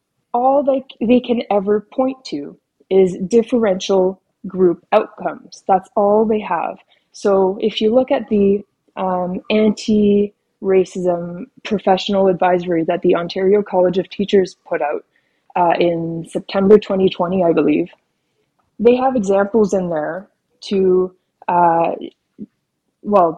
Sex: female